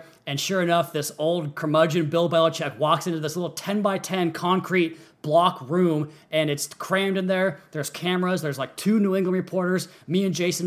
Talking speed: 190 wpm